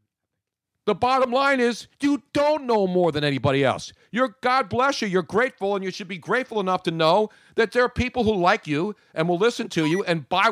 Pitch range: 145-225 Hz